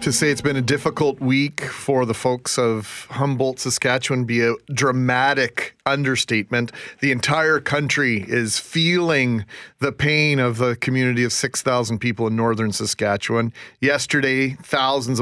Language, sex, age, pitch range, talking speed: English, male, 40-59, 115-145 Hz, 140 wpm